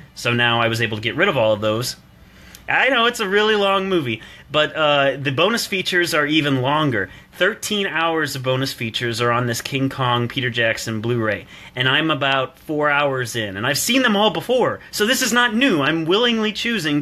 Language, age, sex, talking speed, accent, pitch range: English, 30-49, male, 210 wpm, American, 120-155 Hz